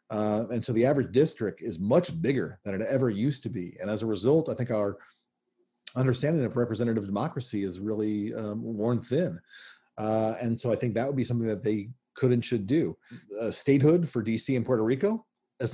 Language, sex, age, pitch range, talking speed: English, male, 40-59, 105-135 Hz, 205 wpm